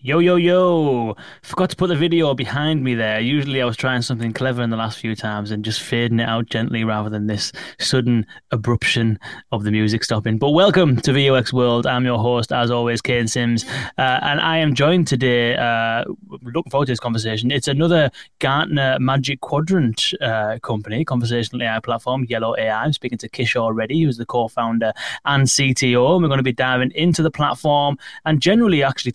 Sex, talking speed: male, 195 wpm